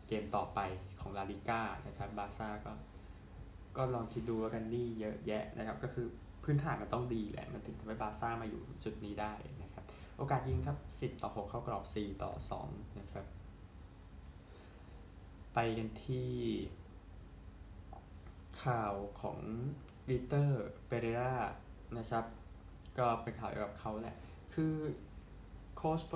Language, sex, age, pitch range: Thai, male, 20-39, 100-120 Hz